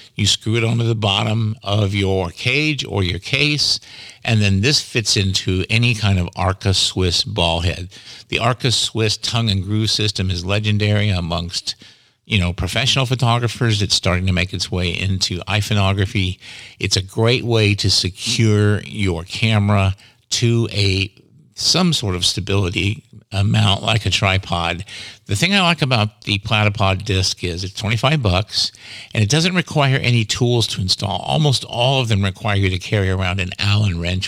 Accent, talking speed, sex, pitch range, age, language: American, 170 wpm, male, 95-120 Hz, 50-69, English